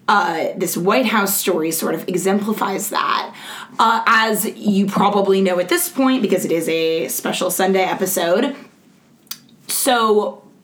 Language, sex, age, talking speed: English, female, 20-39, 145 wpm